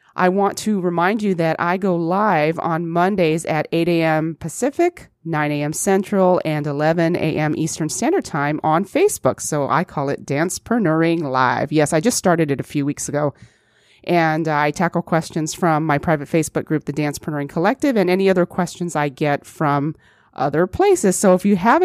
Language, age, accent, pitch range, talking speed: English, 30-49, American, 150-195 Hz, 180 wpm